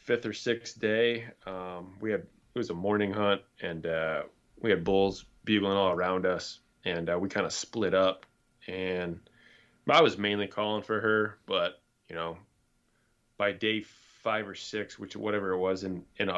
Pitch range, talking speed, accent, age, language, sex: 95-115 Hz, 180 wpm, American, 20-39, English, male